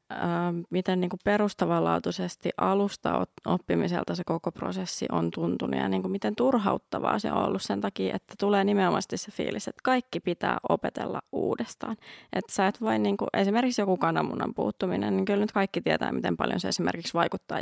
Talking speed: 155 wpm